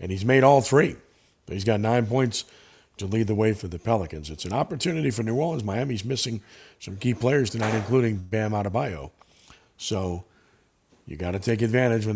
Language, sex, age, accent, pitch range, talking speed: English, male, 50-69, American, 100-130 Hz, 190 wpm